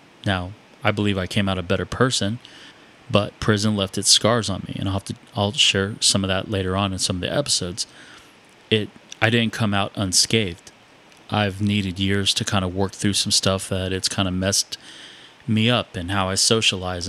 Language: English